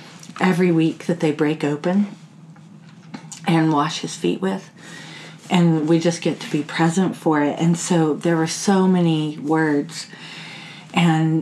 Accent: American